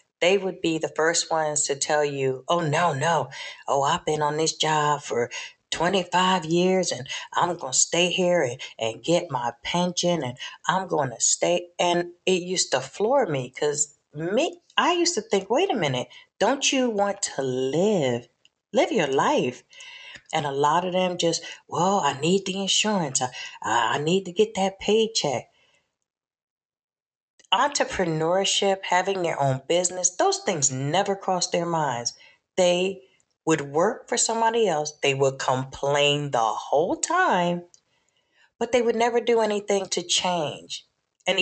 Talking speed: 160 wpm